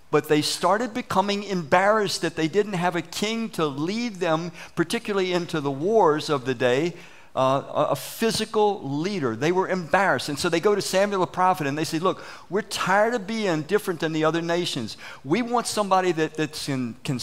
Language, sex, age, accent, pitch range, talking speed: English, male, 50-69, American, 140-185 Hz, 190 wpm